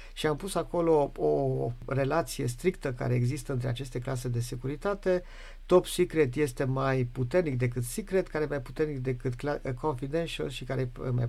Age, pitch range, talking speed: 50-69, 125-165 Hz, 170 wpm